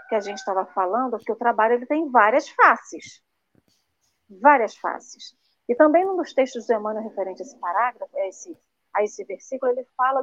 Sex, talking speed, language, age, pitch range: female, 190 wpm, Portuguese, 40-59, 215-290 Hz